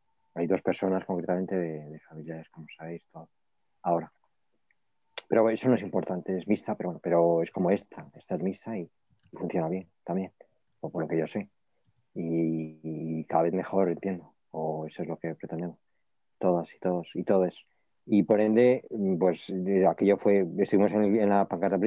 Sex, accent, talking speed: male, Spanish, 180 wpm